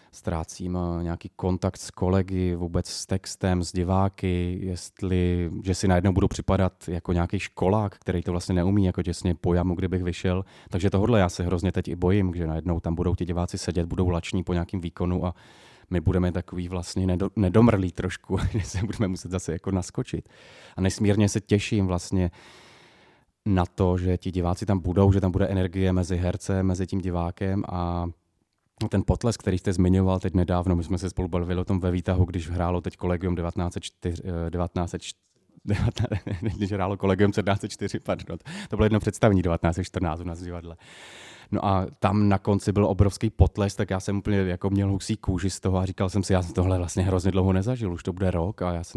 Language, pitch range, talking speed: Czech, 90-100 Hz, 190 wpm